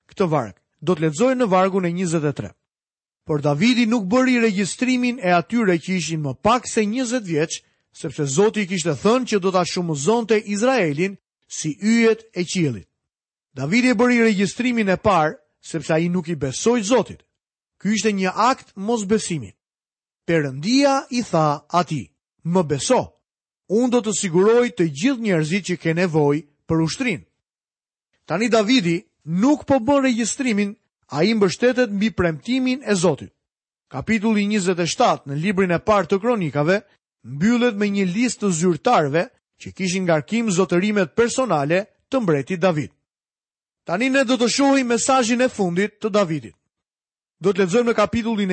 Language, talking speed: Italian, 150 wpm